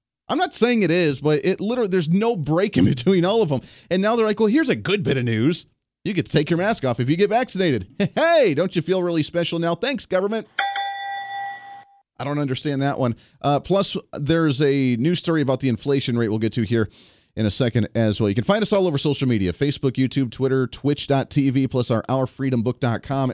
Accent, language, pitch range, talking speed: American, English, 120-160 Hz, 220 wpm